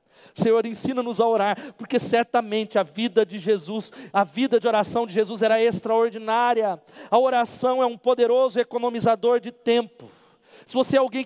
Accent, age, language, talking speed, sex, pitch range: Brazilian, 40-59, Portuguese, 160 wpm, male, 215-255 Hz